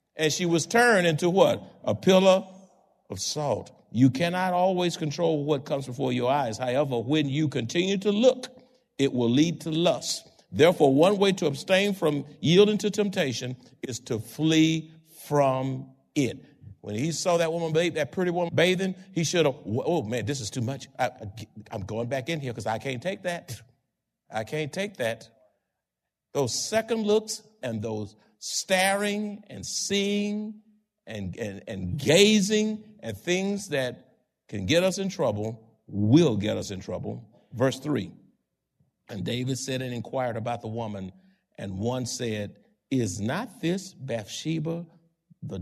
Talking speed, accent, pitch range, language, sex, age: 160 wpm, American, 125-190 Hz, English, male, 50-69